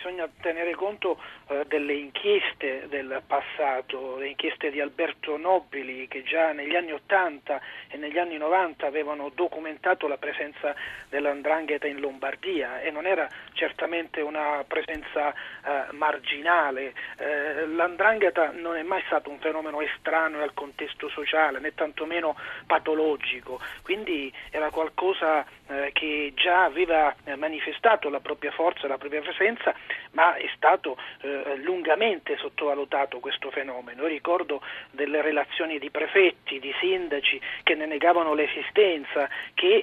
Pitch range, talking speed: 145-175 Hz, 125 wpm